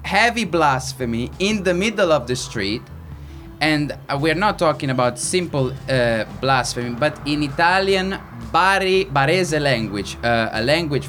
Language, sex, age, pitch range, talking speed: English, male, 20-39, 125-170 Hz, 135 wpm